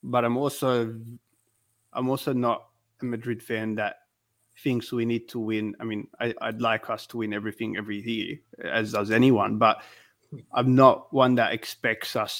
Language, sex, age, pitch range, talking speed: English, male, 20-39, 110-125 Hz, 175 wpm